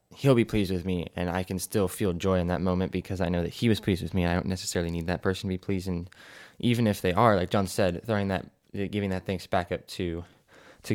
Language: English